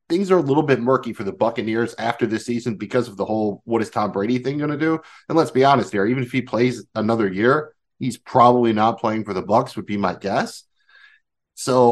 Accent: American